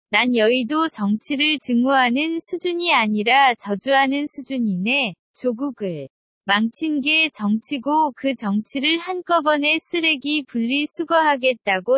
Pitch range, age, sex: 225-310 Hz, 20-39, female